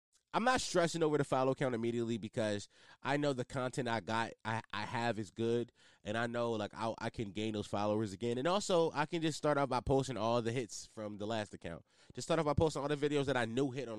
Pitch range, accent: 105-150 Hz, American